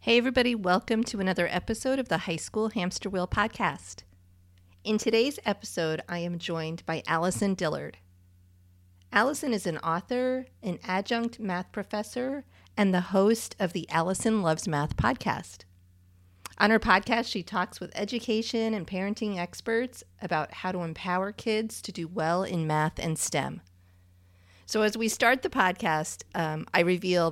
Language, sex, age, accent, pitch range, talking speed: English, female, 40-59, American, 150-210 Hz, 155 wpm